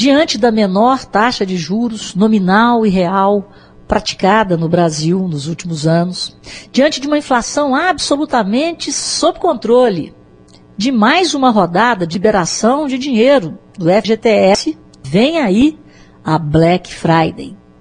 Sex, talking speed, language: female, 125 wpm, Portuguese